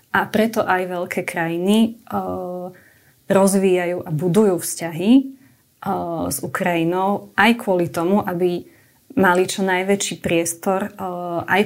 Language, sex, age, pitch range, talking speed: Slovak, female, 20-39, 170-200 Hz, 120 wpm